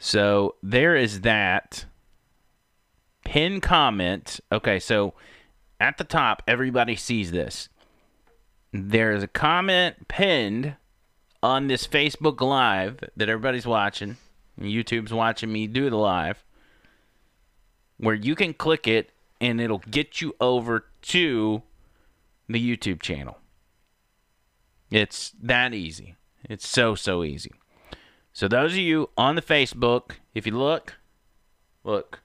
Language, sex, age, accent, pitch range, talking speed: English, male, 30-49, American, 100-145 Hz, 120 wpm